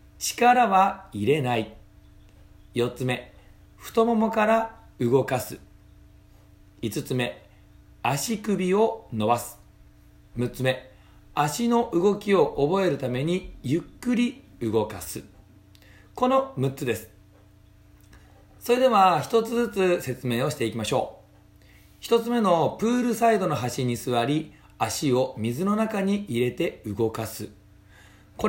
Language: Japanese